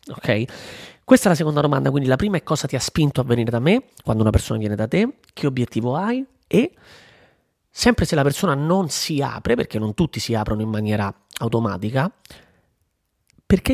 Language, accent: Italian, native